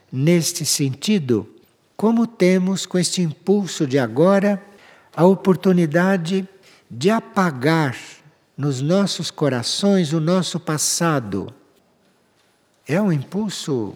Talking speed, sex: 95 wpm, male